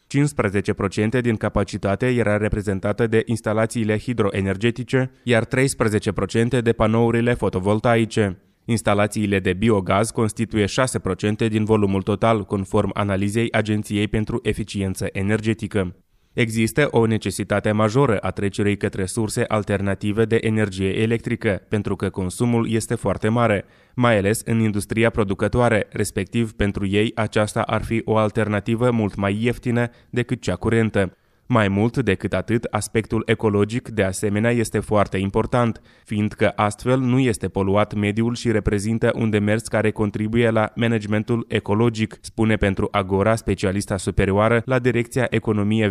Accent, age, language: native, 20-39, Romanian